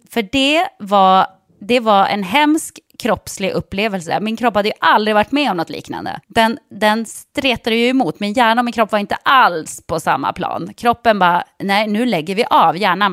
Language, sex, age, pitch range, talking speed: English, female, 20-39, 195-255 Hz, 195 wpm